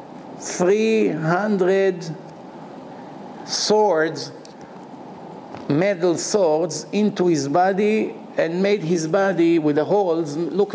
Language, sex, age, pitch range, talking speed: English, male, 50-69, 155-190 Hz, 85 wpm